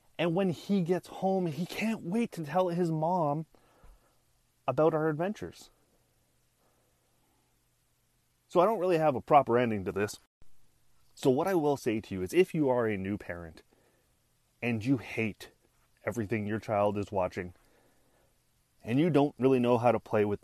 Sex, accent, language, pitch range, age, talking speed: male, American, English, 110-150 Hz, 30-49, 165 wpm